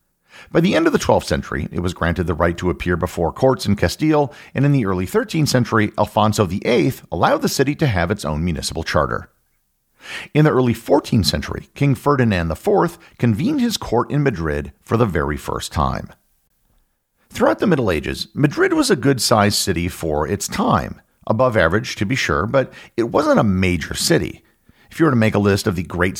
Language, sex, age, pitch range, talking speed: English, male, 50-69, 85-130 Hz, 195 wpm